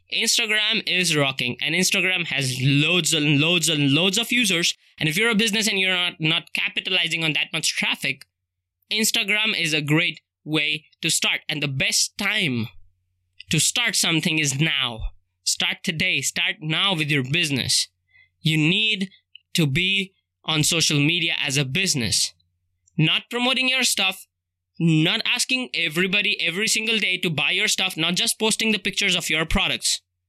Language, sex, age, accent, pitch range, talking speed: English, male, 20-39, Indian, 145-195 Hz, 160 wpm